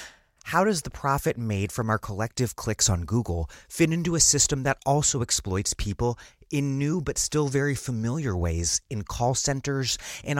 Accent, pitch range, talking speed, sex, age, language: American, 95-130 Hz, 175 wpm, male, 30-49, English